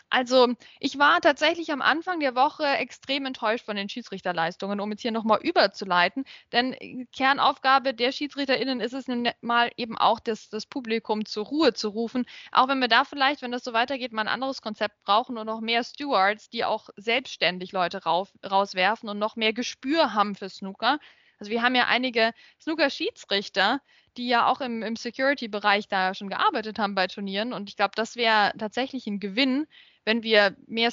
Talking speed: 180 wpm